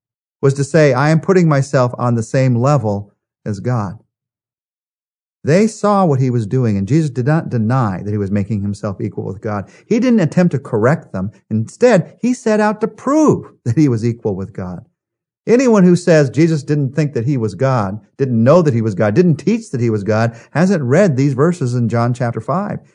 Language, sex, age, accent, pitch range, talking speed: English, male, 50-69, American, 120-180 Hz, 210 wpm